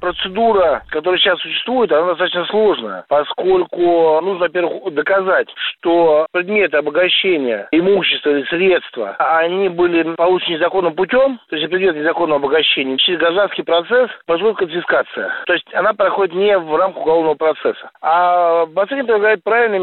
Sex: male